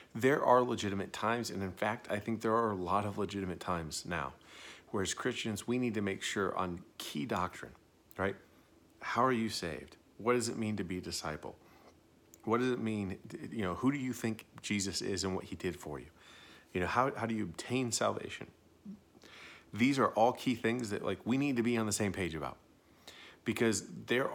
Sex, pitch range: male, 85-110 Hz